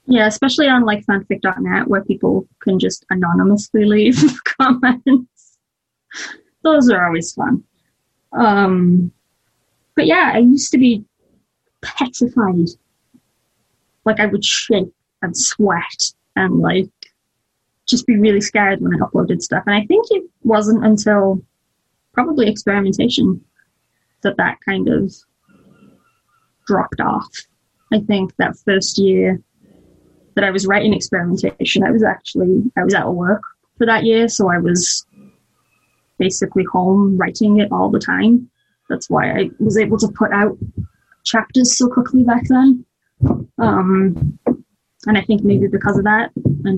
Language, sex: English, female